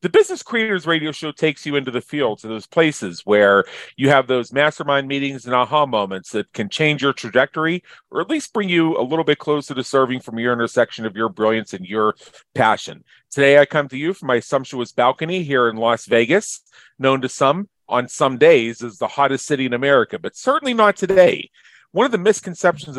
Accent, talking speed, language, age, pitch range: American, 210 wpm, English, 40-59, 125-155 Hz